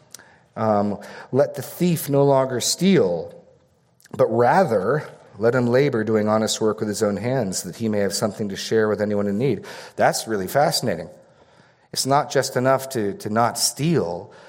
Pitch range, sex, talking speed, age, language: 105-130 Hz, male, 170 wpm, 40-59, English